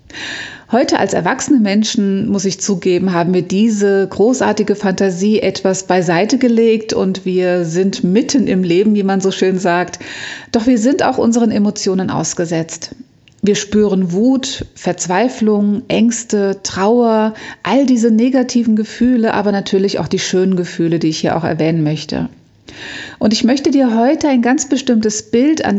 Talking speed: 150 wpm